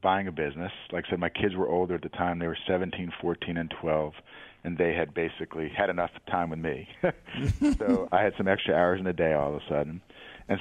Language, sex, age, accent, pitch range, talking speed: English, male, 50-69, American, 80-95 Hz, 240 wpm